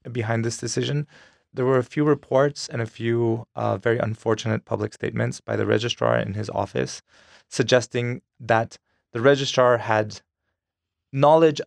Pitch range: 110-135 Hz